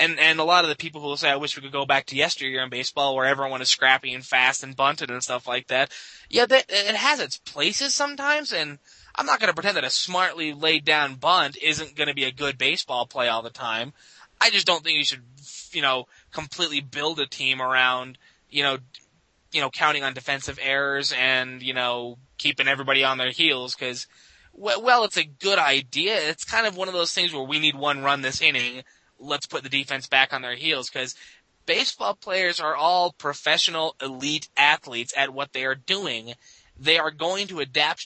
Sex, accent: male, American